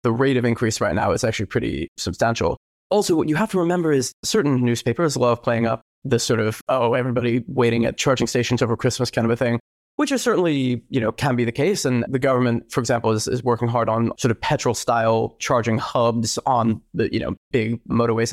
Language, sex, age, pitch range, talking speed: English, male, 20-39, 115-135 Hz, 225 wpm